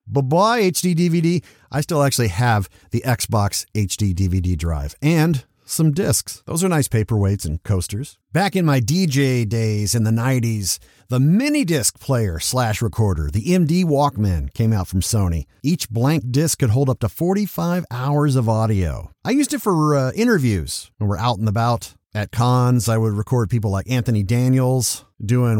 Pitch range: 100-145 Hz